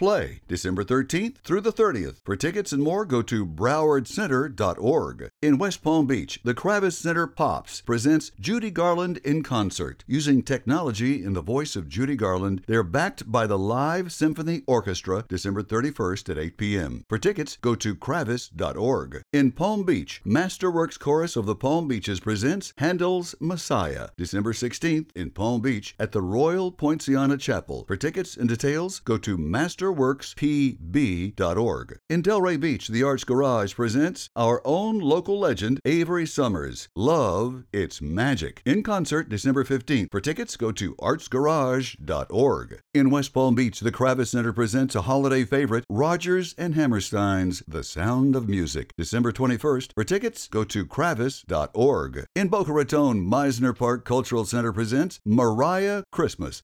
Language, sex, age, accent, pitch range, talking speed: English, male, 60-79, American, 110-155 Hz, 150 wpm